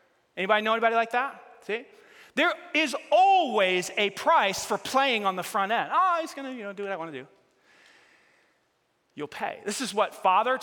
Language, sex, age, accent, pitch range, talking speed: English, male, 30-49, American, 175-260 Hz, 200 wpm